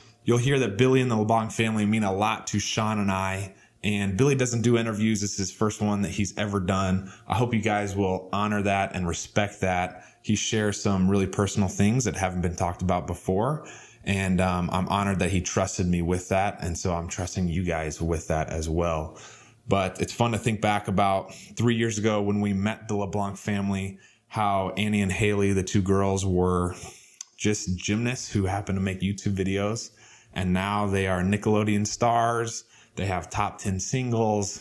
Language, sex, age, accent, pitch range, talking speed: English, male, 20-39, American, 90-105 Hz, 200 wpm